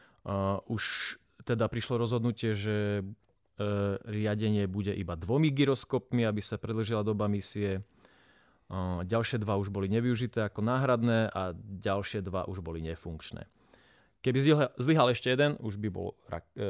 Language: Slovak